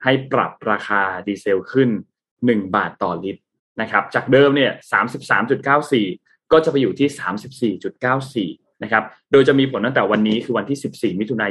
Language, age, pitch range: Thai, 20-39, 110-145 Hz